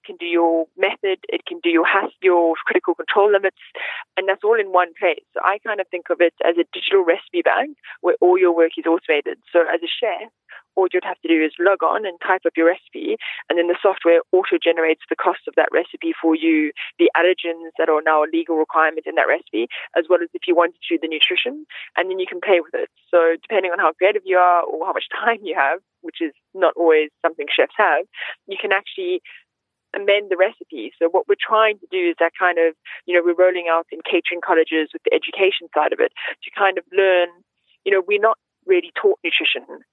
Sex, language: female, English